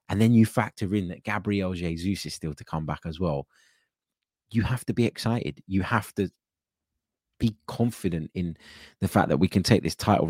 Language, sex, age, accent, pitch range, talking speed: English, male, 20-39, British, 85-105 Hz, 200 wpm